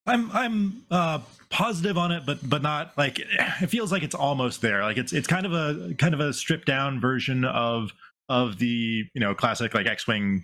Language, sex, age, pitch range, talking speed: English, male, 20-39, 115-150 Hz, 205 wpm